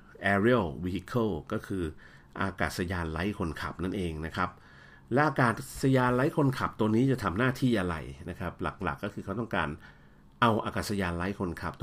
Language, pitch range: Thai, 85-125 Hz